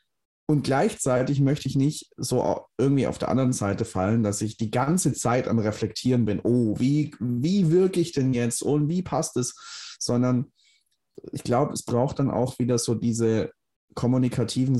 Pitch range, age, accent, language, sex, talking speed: 105-130 Hz, 30-49, German, German, male, 170 wpm